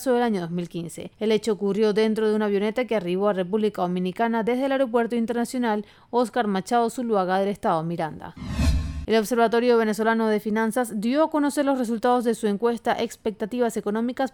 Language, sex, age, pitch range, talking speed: Spanish, female, 30-49, 195-240 Hz, 165 wpm